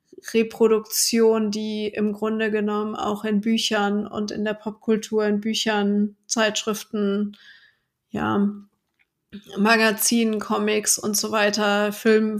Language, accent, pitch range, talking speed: German, German, 210-225 Hz, 105 wpm